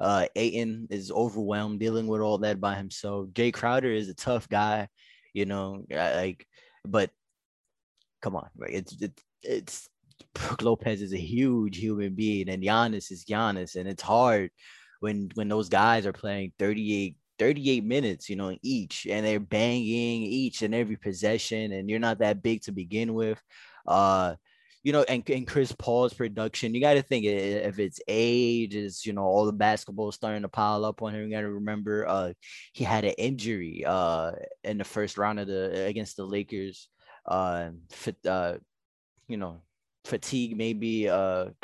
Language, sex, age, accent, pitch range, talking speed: English, male, 20-39, American, 100-115 Hz, 175 wpm